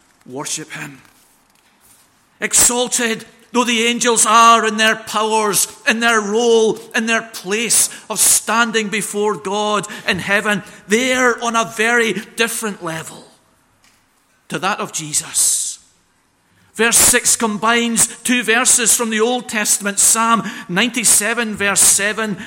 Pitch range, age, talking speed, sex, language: 190-230 Hz, 50-69, 120 wpm, male, English